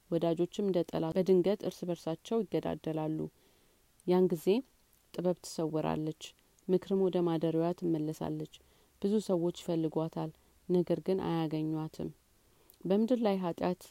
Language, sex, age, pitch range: Amharic, female, 30-49, 165-185 Hz